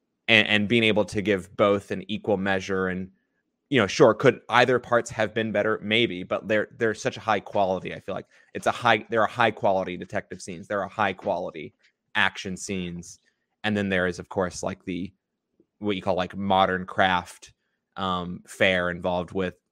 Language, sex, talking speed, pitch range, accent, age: English, male, 190 wpm, 95-110 Hz, American, 20-39